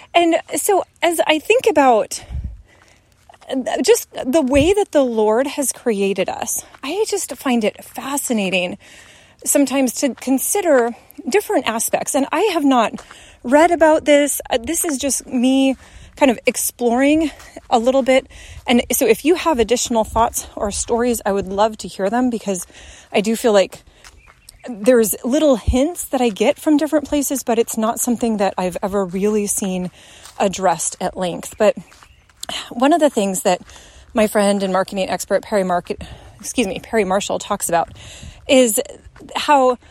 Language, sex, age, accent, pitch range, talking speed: English, female, 30-49, American, 210-290 Hz, 155 wpm